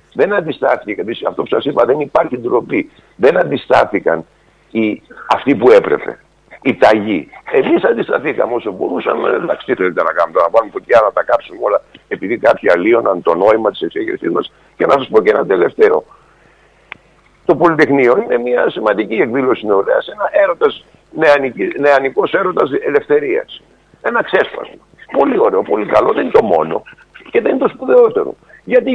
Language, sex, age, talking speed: Greek, male, 60-79, 150 wpm